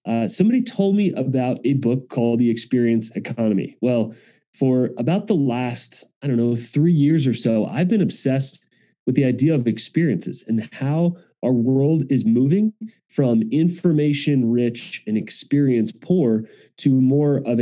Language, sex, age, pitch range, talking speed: English, male, 30-49, 120-150 Hz, 155 wpm